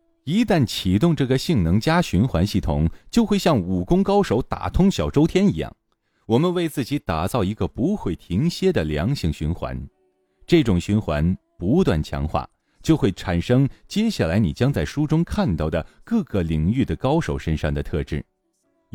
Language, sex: Chinese, male